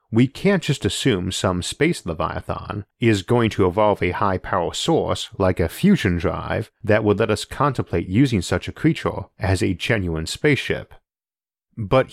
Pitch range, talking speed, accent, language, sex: 90-120 Hz, 165 wpm, American, English, male